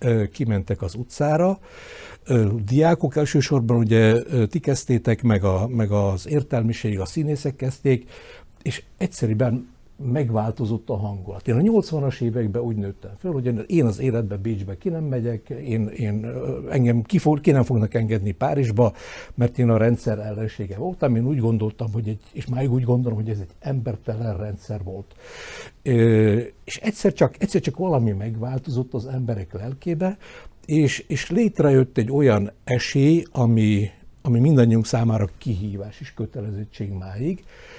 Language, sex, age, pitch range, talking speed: Hungarian, male, 60-79, 110-135 Hz, 145 wpm